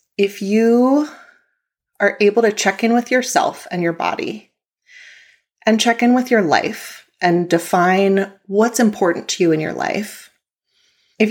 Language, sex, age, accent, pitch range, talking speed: English, female, 30-49, American, 175-235 Hz, 150 wpm